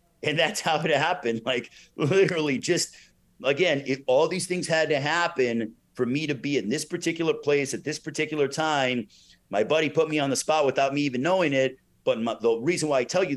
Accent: American